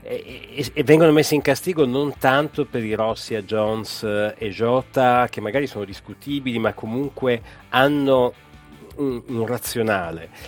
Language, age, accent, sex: Italian, 40-59, native, male